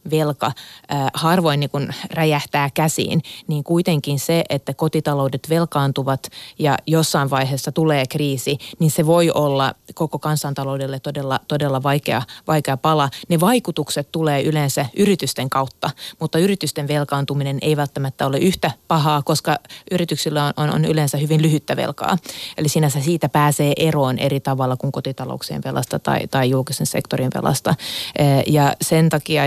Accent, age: native, 30-49